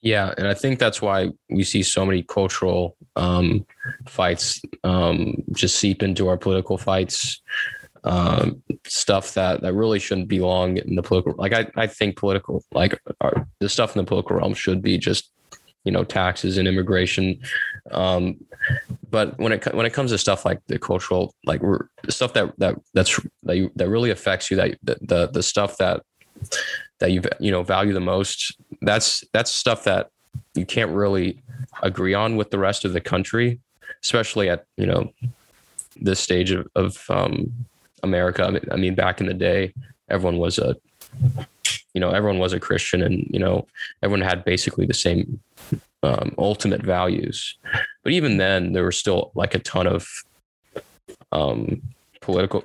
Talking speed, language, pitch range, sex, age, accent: 175 wpm, English, 90-110 Hz, male, 20-39, American